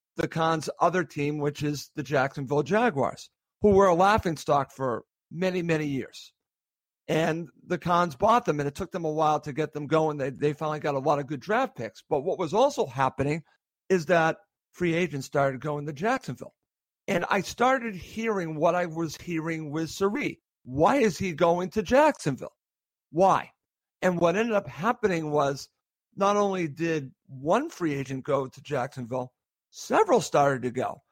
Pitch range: 150-195 Hz